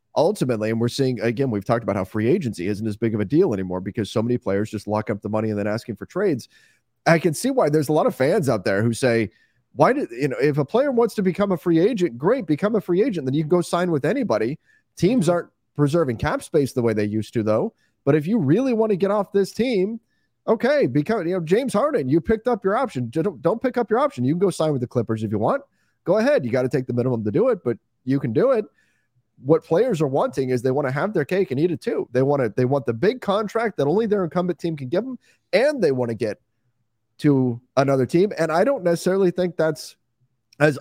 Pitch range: 115-175 Hz